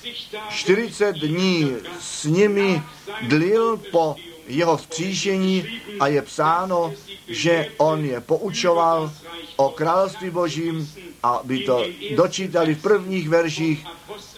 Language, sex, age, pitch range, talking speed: Czech, male, 40-59, 150-185 Hz, 105 wpm